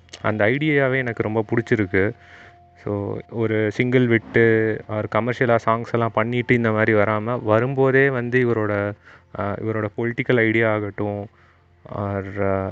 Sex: male